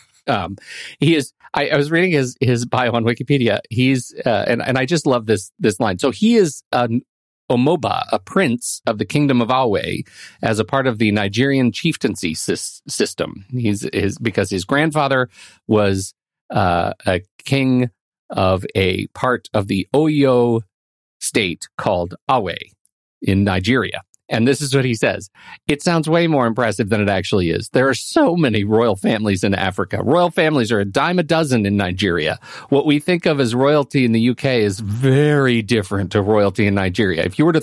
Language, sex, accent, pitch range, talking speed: English, male, American, 105-145 Hz, 185 wpm